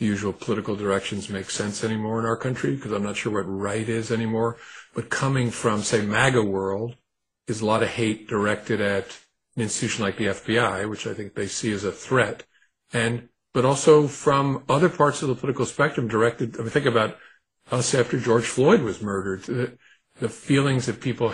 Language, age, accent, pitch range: English, 50-69, American, 110-125 Hz